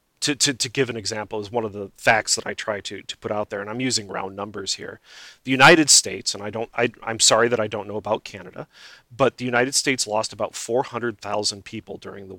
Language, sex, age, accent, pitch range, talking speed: English, male, 30-49, American, 105-130 Hz, 235 wpm